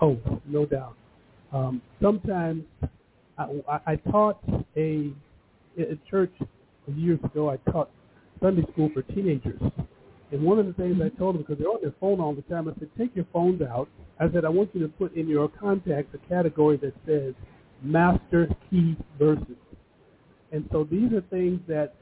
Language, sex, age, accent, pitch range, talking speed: English, male, 50-69, American, 140-180 Hz, 175 wpm